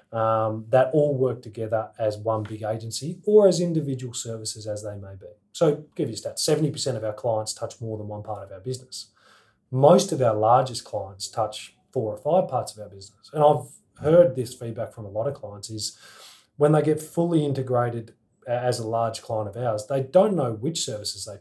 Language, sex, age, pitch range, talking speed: English, male, 30-49, 110-145 Hz, 210 wpm